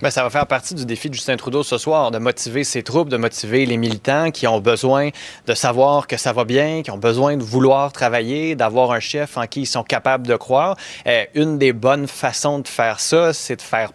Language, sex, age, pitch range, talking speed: French, male, 30-49, 120-150 Hz, 240 wpm